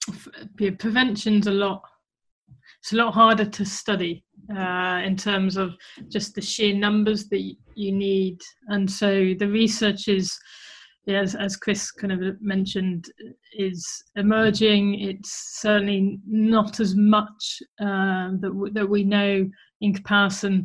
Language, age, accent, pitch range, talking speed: English, 20-39, British, 190-215 Hz, 140 wpm